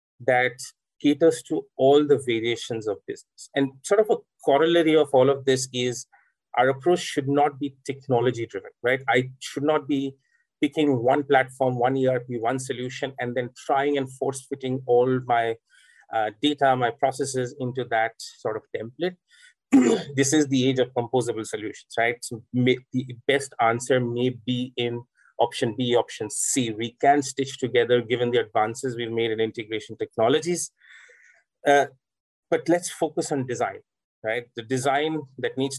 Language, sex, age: English, male, 30-49